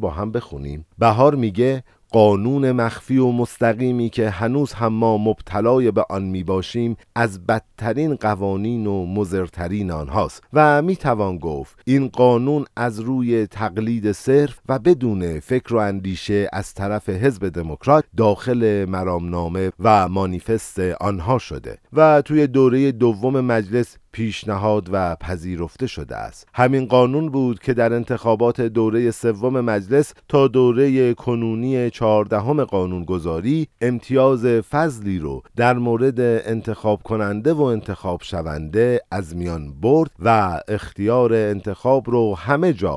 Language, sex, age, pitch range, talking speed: Persian, male, 50-69, 100-130 Hz, 125 wpm